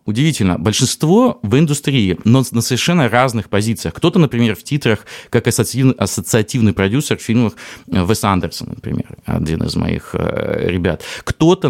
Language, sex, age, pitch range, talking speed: Russian, male, 30-49, 105-140 Hz, 145 wpm